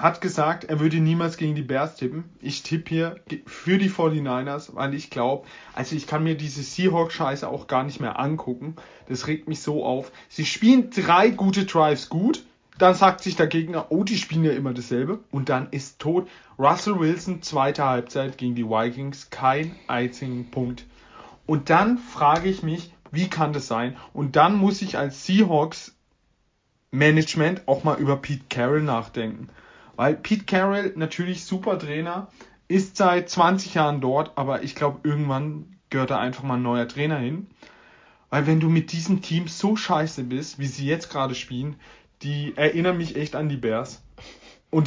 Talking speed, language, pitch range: 175 wpm, German, 135-175 Hz